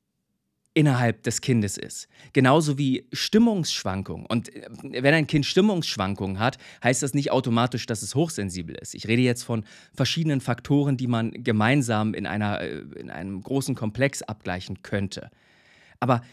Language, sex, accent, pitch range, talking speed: German, male, German, 120-165 Hz, 140 wpm